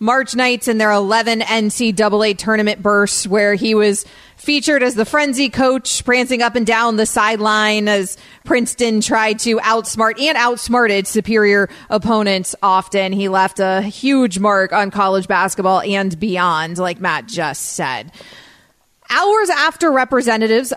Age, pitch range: 30-49, 200-240 Hz